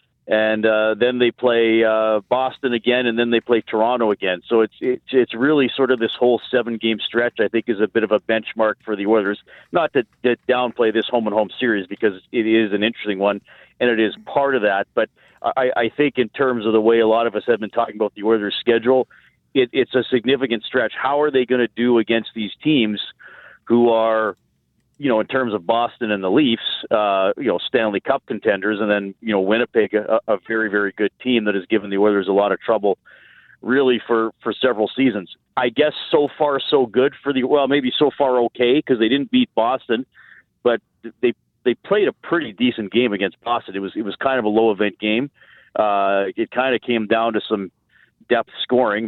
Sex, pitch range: male, 105-125 Hz